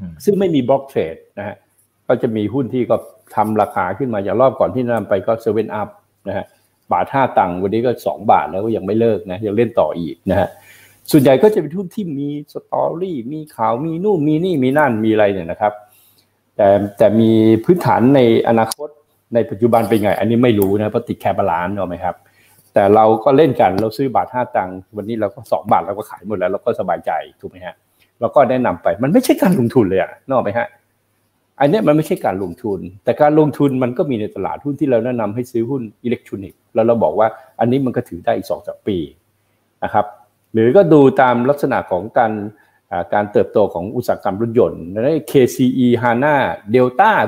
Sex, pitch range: male, 110-135 Hz